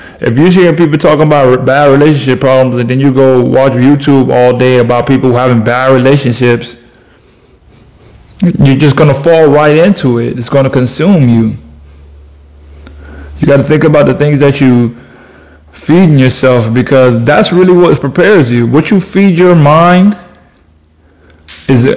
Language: English